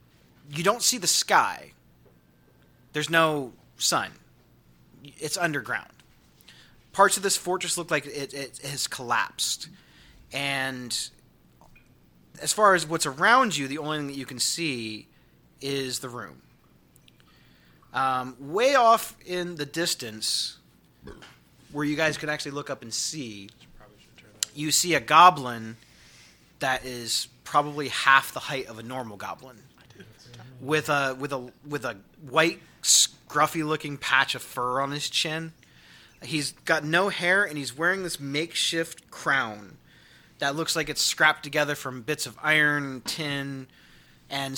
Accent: American